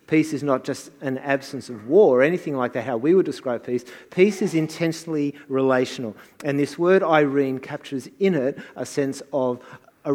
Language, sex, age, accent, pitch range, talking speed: English, male, 50-69, Australian, 125-155 Hz, 190 wpm